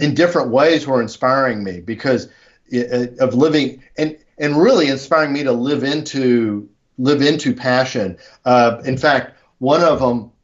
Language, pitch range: English, 115-130 Hz